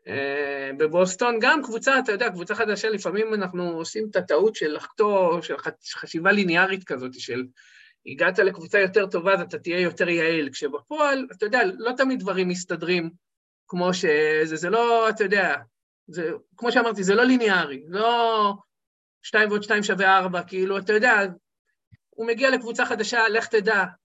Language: Hebrew